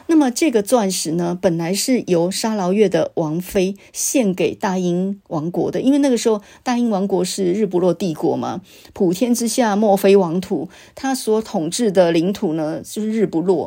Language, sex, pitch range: Chinese, female, 175-220 Hz